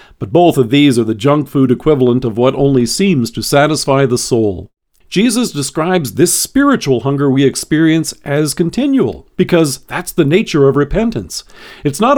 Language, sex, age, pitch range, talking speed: English, male, 50-69, 135-195 Hz, 170 wpm